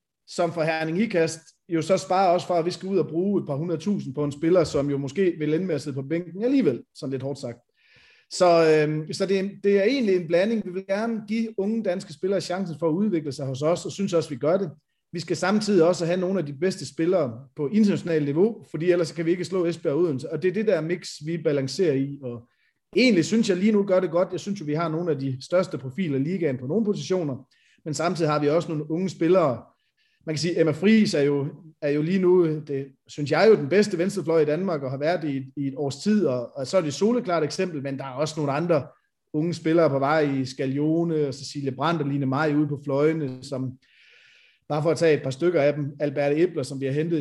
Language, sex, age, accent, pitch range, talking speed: Danish, male, 30-49, native, 145-180 Hz, 255 wpm